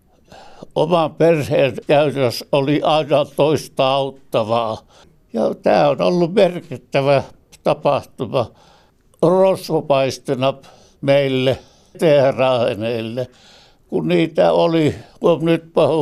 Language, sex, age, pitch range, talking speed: Finnish, male, 60-79, 135-170 Hz, 75 wpm